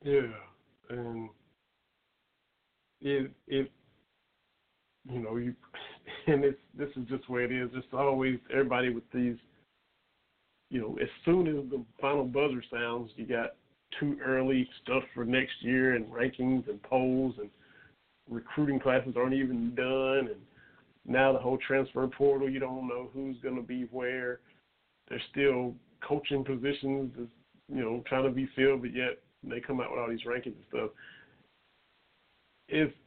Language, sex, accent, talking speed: English, male, American, 150 wpm